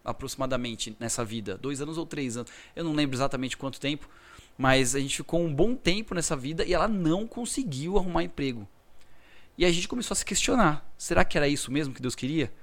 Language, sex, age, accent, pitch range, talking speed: Portuguese, male, 20-39, Brazilian, 125-150 Hz, 210 wpm